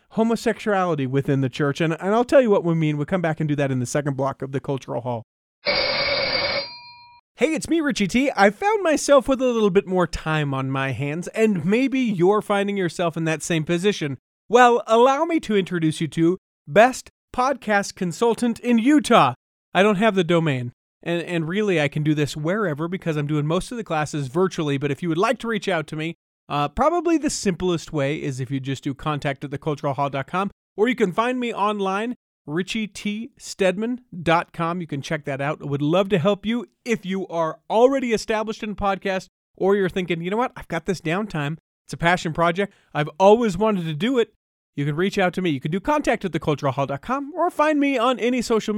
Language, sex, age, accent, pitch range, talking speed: English, male, 30-49, American, 155-225 Hz, 215 wpm